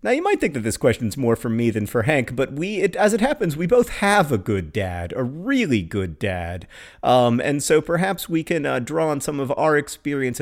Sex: male